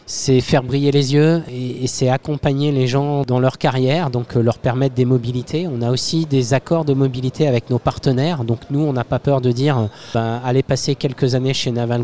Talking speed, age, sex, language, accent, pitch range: 215 wpm, 20-39, male, French, French, 120-145 Hz